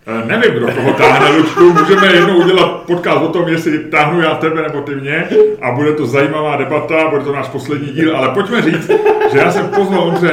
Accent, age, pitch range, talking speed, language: native, 30-49, 135-175 Hz, 205 wpm, Czech